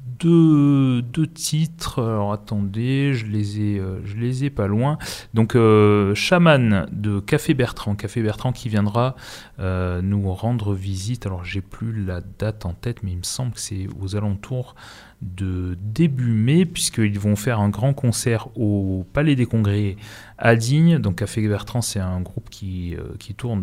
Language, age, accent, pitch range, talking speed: French, 30-49, French, 100-130 Hz, 175 wpm